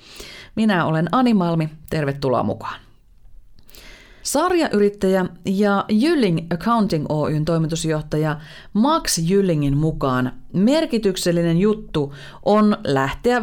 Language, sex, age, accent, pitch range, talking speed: Finnish, female, 30-49, native, 155-220 Hz, 85 wpm